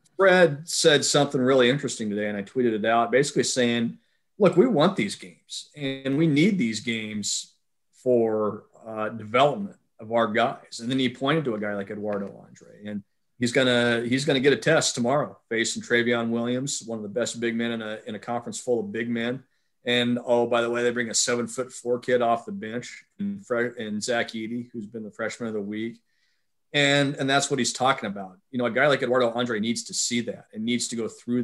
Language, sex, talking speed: English, male, 220 wpm